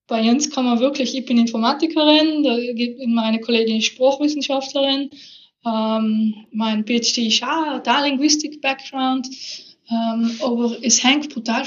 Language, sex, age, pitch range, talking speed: German, female, 20-39, 215-245 Hz, 115 wpm